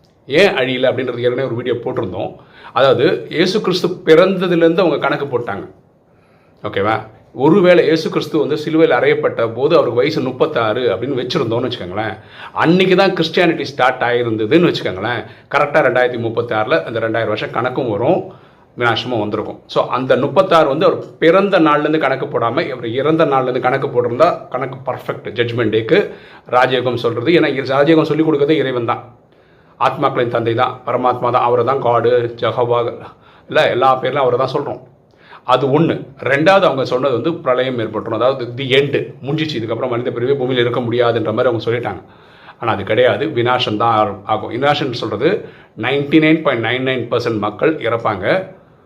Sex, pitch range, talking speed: male, 120-155 Hz, 140 wpm